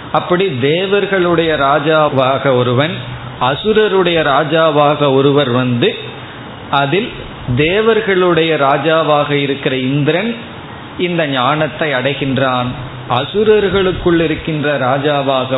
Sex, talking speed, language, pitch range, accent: male, 75 wpm, Tamil, 135-165 Hz, native